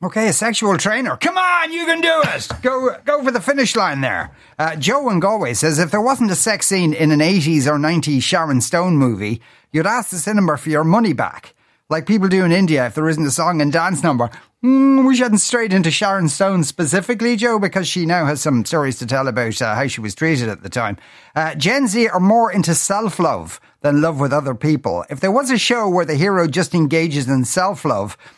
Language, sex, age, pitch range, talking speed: English, male, 40-59, 150-220 Hz, 225 wpm